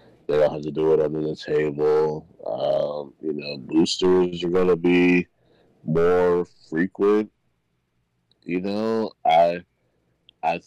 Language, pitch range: English, 75-90 Hz